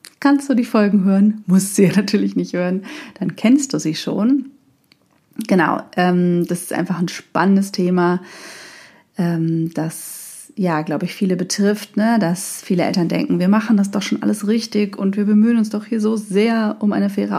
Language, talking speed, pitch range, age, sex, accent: German, 175 wpm, 180-230 Hz, 30-49, female, German